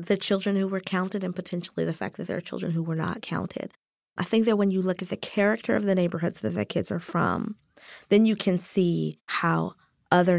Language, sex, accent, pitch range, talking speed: English, female, American, 170-210 Hz, 230 wpm